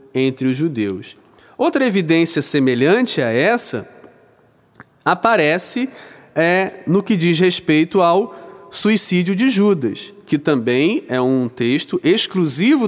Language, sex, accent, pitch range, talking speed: Portuguese, male, Brazilian, 135-205 Hz, 105 wpm